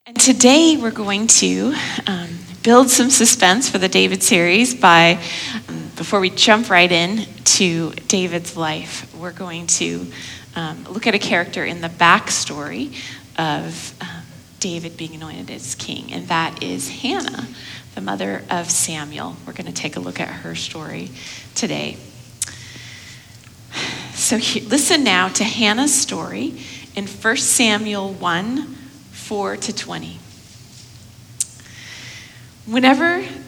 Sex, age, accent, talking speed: female, 30-49, American, 135 wpm